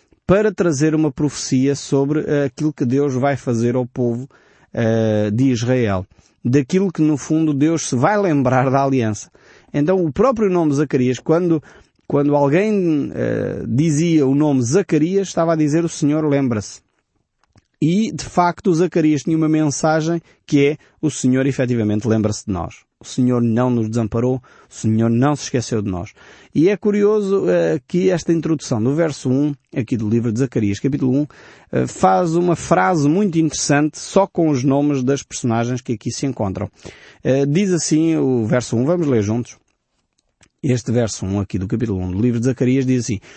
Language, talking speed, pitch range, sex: Portuguese, 165 wpm, 120-160 Hz, male